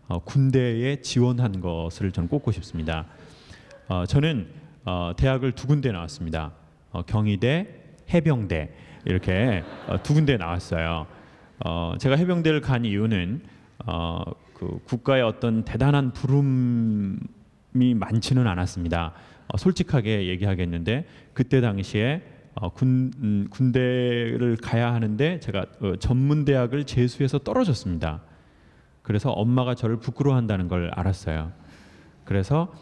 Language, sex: English, male